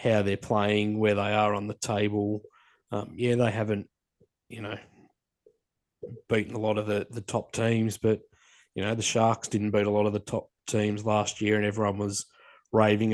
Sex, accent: male, Australian